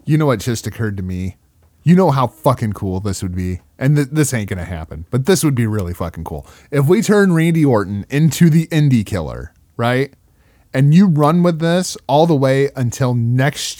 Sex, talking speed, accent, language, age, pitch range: male, 215 wpm, American, English, 30-49, 85-130 Hz